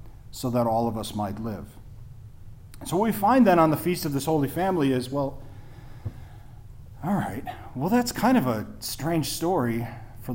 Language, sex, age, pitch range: English, male, 40-59, 115-155 Hz